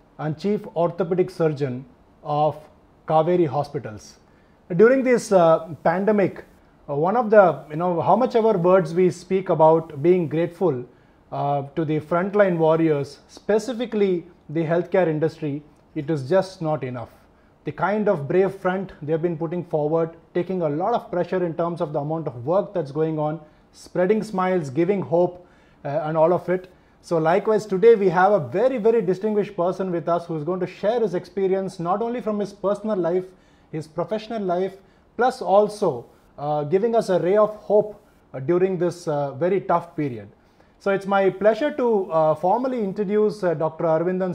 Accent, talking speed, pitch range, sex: Indian, 175 wpm, 160-200 Hz, male